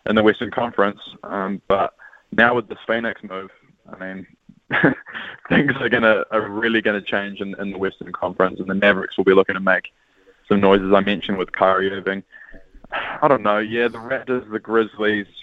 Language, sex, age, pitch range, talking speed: English, male, 20-39, 95-110 Hz, 190 wpm